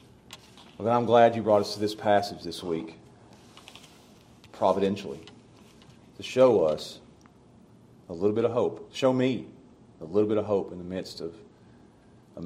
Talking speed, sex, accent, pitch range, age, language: 155 wpm, male, American, 90-110 Hz, 40-59, English